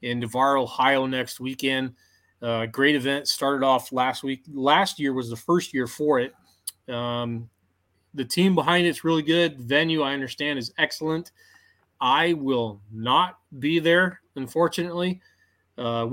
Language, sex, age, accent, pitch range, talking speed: English, male, 30-49, American, 120-145 Hz, 145 wpm